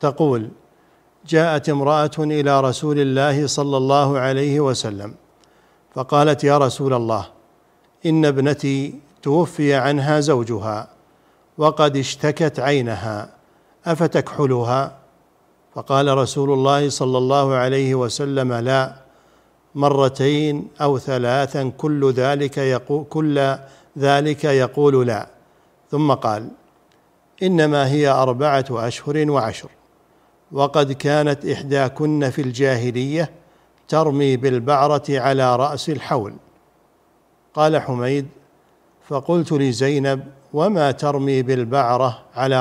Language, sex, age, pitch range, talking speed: Arabic, male, 50-69, 130-150 Hz, 95 wpm